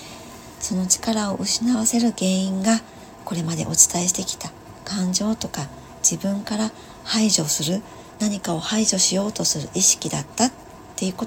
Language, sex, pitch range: Japanese, male, 170-220 Hz